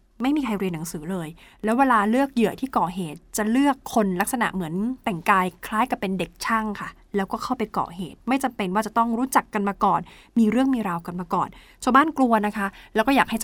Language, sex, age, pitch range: Thai, female, 20-39, 195-245 Hz